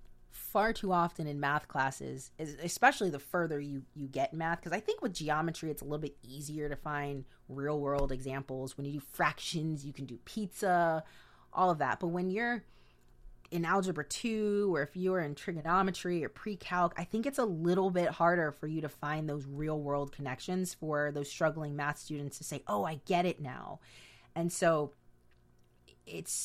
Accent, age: American, 30-49